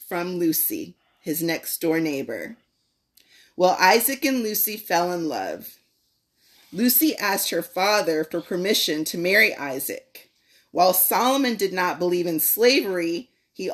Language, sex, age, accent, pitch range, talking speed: English, female, 30-49, American, 165-225 Hz, 130 wpm